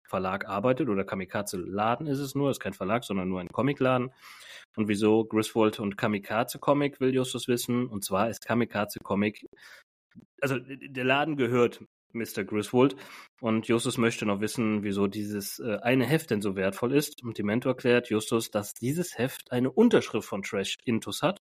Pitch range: 110-135 Hz